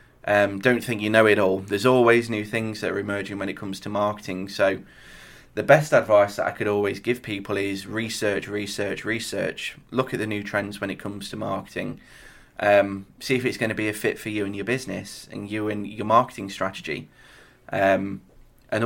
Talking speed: 205 wpm